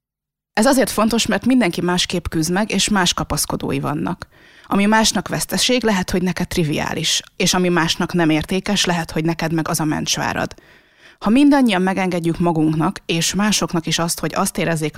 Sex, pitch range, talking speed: female, 160-210 Hz, 170 wpm